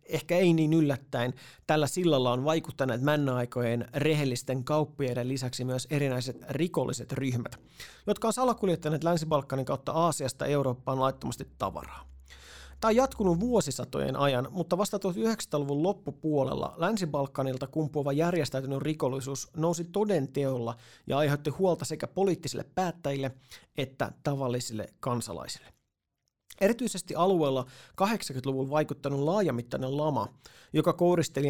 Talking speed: 115 wpm